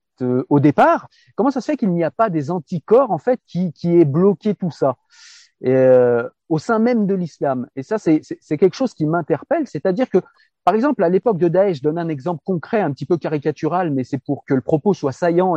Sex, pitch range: male, 140-190 Hz